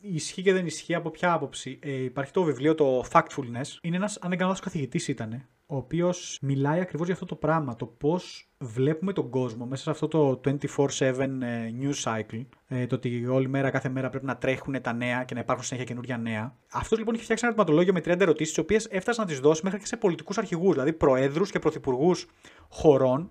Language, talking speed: Greek, 205 wpm